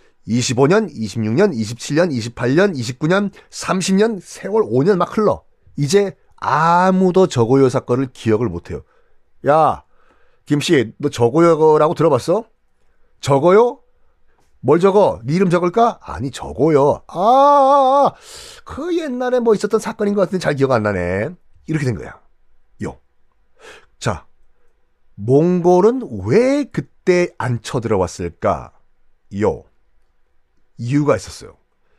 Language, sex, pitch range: Korean, male, 120-190 Hz